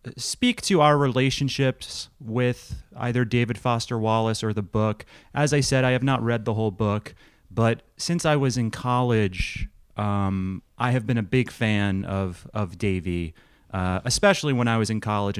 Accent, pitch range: American, 100-130 Hz